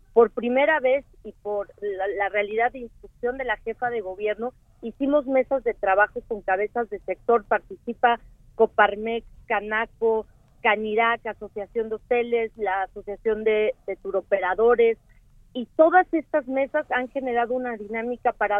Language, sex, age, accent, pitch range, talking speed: Spanish, female, 40-59, Mexican, 210-245 Hz, 140 wpm